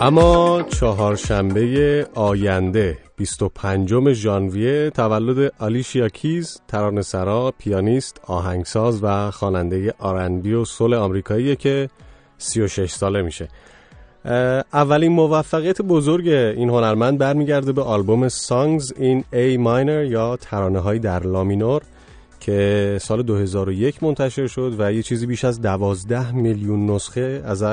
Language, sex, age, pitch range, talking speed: English, male, 30-49, 100-130 Hz, 115 wpm